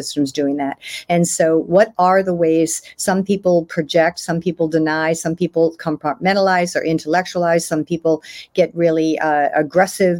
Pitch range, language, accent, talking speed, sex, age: 160-185 Hz, English, American, 155 wpm, female, 50-69